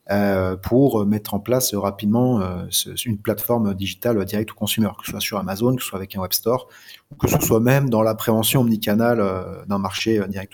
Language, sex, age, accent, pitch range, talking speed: French, male, 30-49, French, 100-125 Hz, 195 wpm